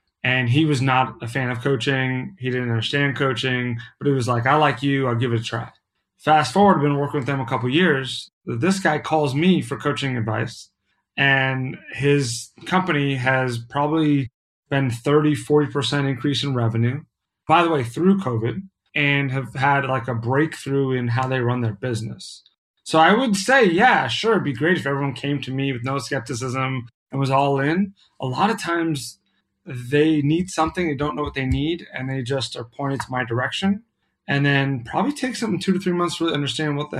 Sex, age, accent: male, 30-49, American